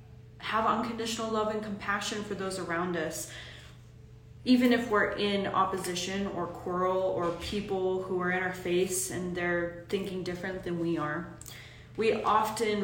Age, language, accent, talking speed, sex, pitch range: 20-39, English, American, 150 wpm, female, 165-195 Hz